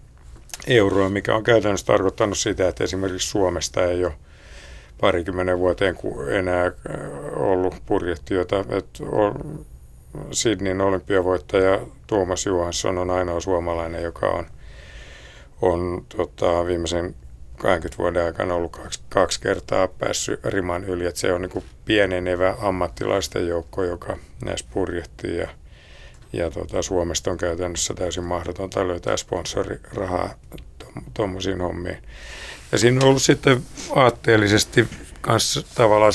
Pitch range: 85-95 Hz